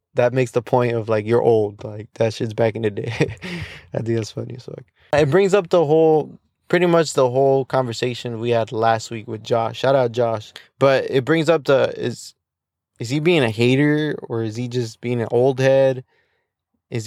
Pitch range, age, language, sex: 115-135 Hz, 20-39, English, male